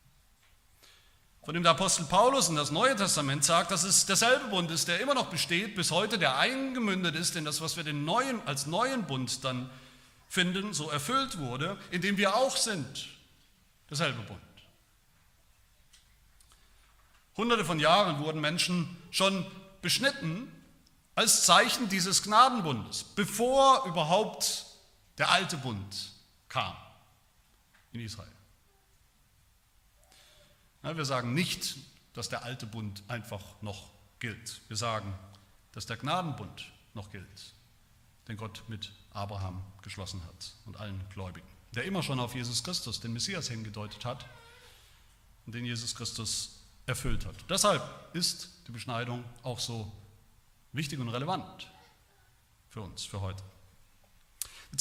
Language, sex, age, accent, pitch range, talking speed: German, male, 40-59, German, 105-175 Hz, 130 wpm